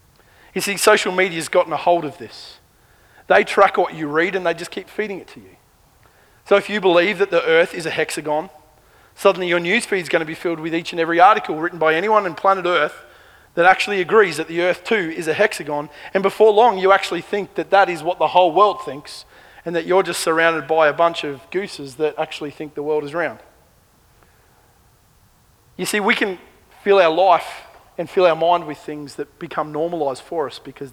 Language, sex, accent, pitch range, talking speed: English, male, Australian, 150-185 Hz, 215 wpm